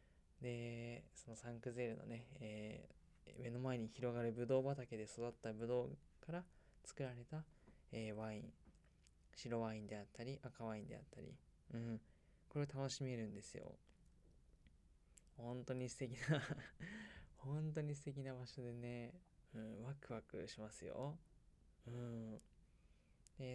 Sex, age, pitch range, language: male, 20-39, 110-130 Hz, Japanese